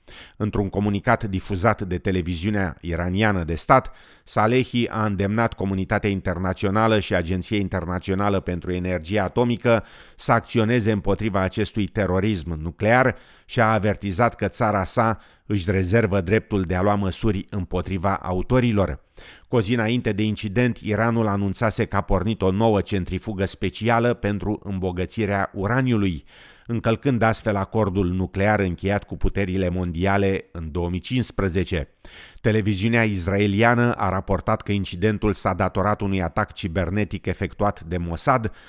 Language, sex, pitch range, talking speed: Romanian, male, 95-110 Hz, 125 wpm